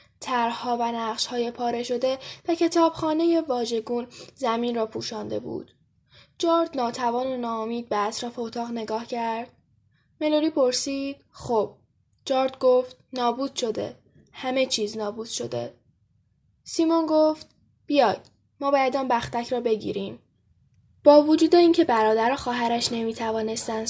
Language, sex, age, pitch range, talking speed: Persian, female, 10-29, 220-270 Hz, 120 wpm